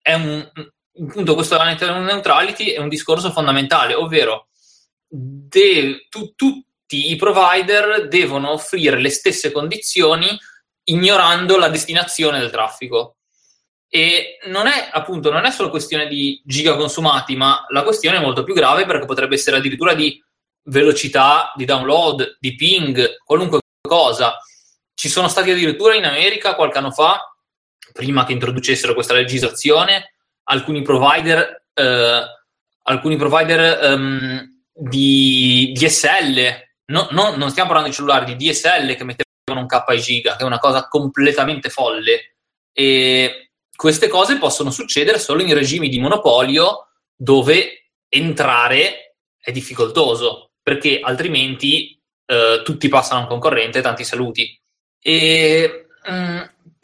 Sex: male